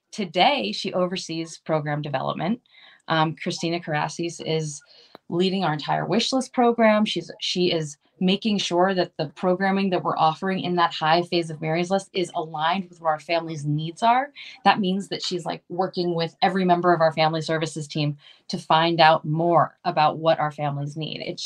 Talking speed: 180 wpm